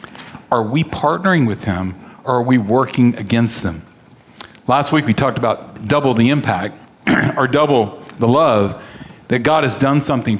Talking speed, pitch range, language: 160 wpm, 125-150 Hz, English